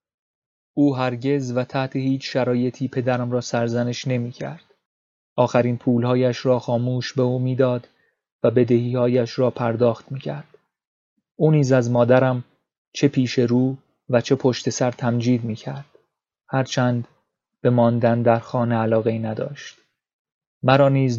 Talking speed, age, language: 125 wpm, 30-49, Persian